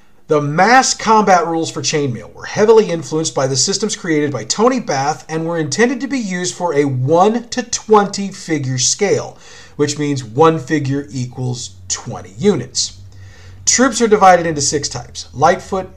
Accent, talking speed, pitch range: American, 165 wpm, 135-190 Hz